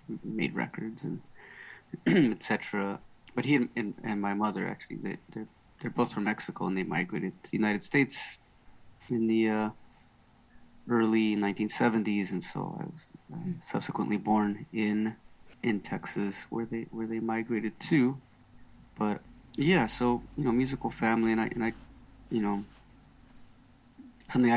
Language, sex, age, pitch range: English, male, 30-49, 100-120 Hz